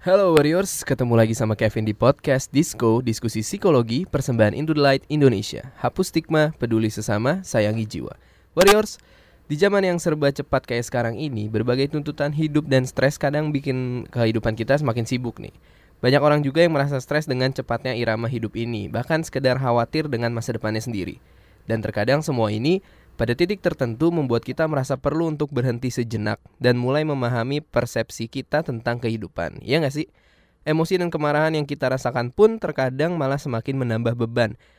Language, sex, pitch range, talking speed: Indonesian, male, 115-150 Hz, 165 wpm